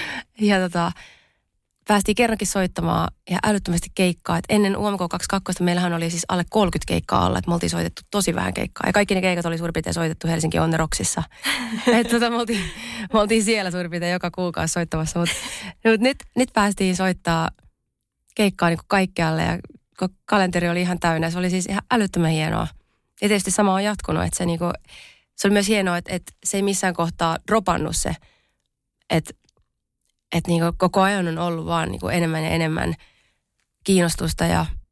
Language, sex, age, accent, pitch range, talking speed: Finnish, female, 20-39, native, 165-195 Hz, 165 wpm